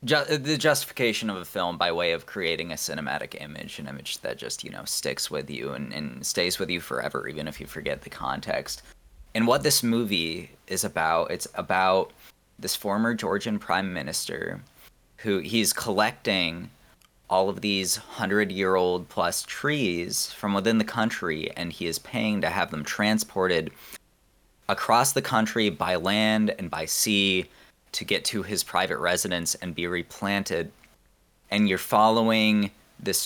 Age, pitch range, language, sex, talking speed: 20-39, 95-120 Hz, English, male, 160 wpm